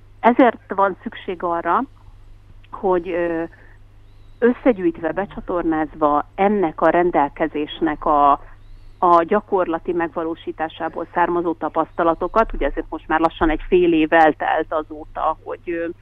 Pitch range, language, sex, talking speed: 155-185 Hz, Hungarian, female, 100 wpm